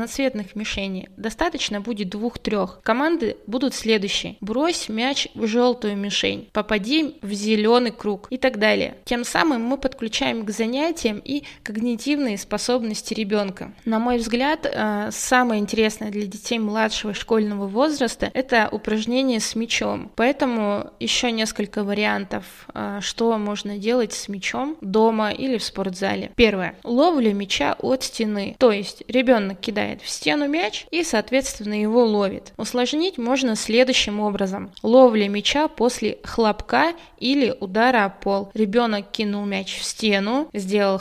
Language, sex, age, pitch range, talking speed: Russian, female, 20-39, 205-250 Hz, 135 wpm